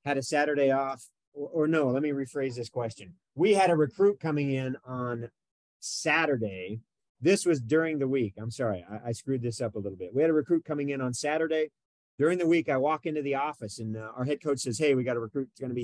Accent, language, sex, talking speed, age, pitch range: American, English, male, 245 wpm, 40-59, 110-150 Hz